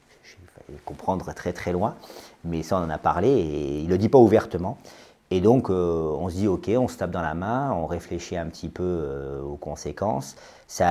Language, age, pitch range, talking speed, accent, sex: French, 40-59, 75-95 Hz, 215 wpm, French, male